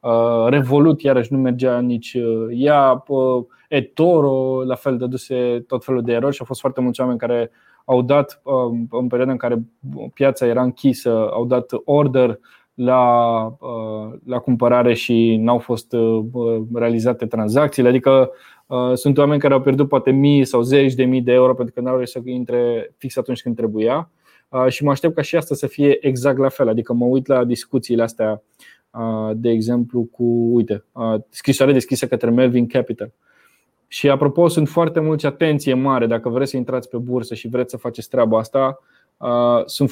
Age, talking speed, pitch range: 20-39, 170 wpm, 120-135 Hz